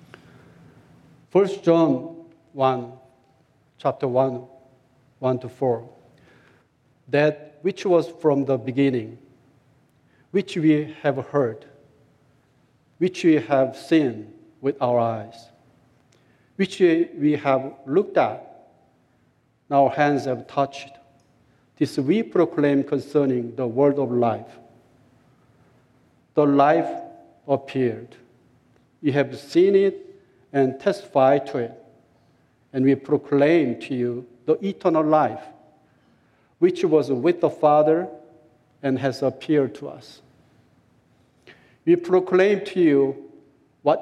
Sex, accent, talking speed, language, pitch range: male, Japanese, 105 wpm, English, 130-160 Hz